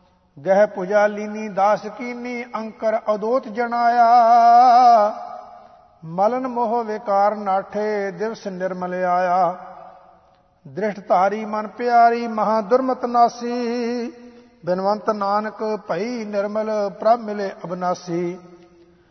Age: 50-69